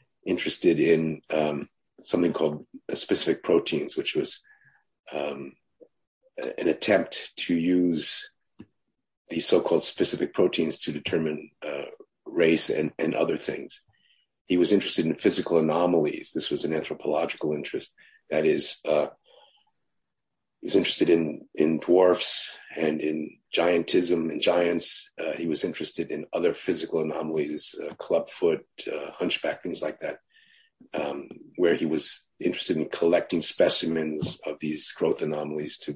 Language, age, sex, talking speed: English, 40-59, male, 130 wpm